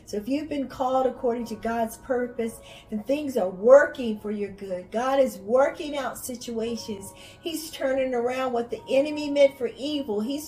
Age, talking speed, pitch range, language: 50-69, 180 wpm, 225-275 Hz, English